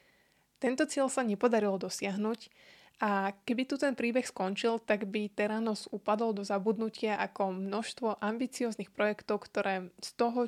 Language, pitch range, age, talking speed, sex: Slovak, 205-235 Hz, 20-39, 135 wpm, female